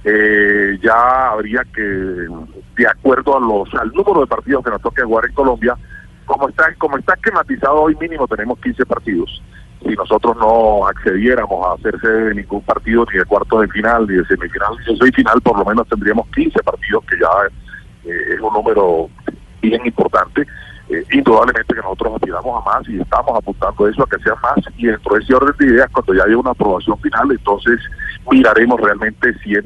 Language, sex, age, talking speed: Spanish, male, 40-59, 190 wpm